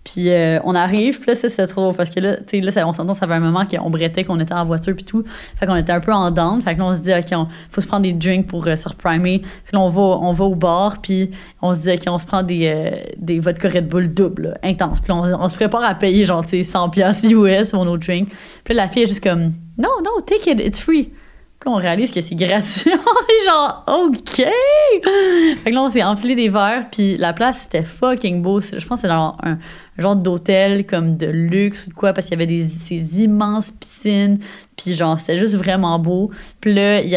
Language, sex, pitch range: French, female, 175-225 Hz